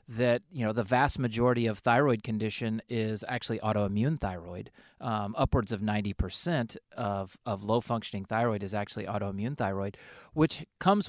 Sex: male